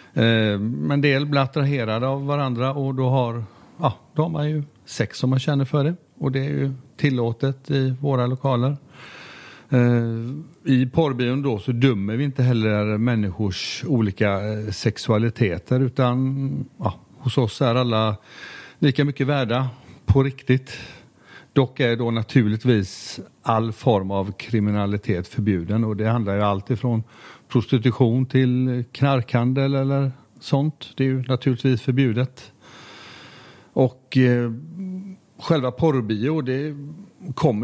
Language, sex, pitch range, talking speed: Swedish, male, 115-140 Hz, 125 wpm